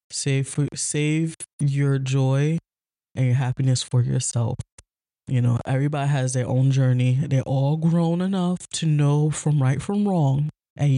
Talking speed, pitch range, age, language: 155 wpm, 135-170 Hz, 20-39, English